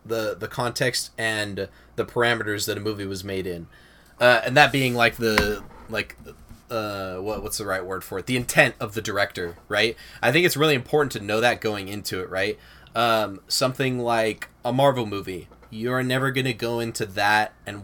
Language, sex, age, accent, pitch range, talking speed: English, male, 20-39, American, 100-125 Hz, 200 wpm